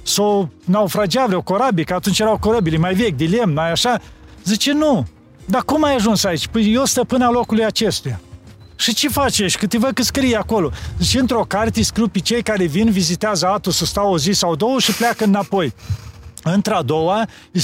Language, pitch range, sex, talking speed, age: Romanian, 180-230 Hz, male, 185 wpm, 40-59